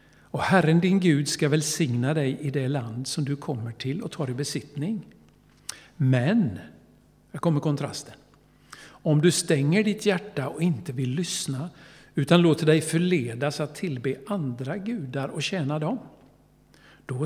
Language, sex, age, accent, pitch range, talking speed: Swedish, male, 60-79, native, 140-180 Hz, 155 wpm